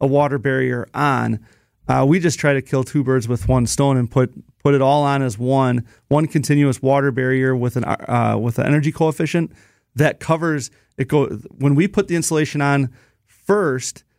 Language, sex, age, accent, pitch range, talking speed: English, male, 30-49, American, 125-145 Hz, 190 wpm